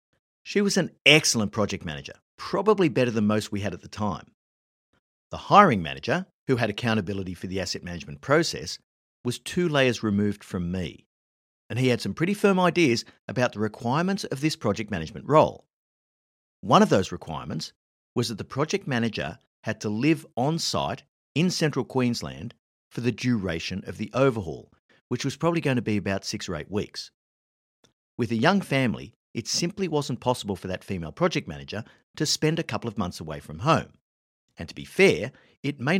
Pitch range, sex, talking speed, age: 95-140 Hz, male, 180 wpm, 50-69